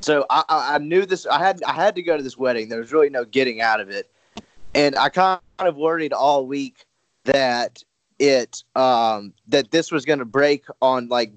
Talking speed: 210 wpm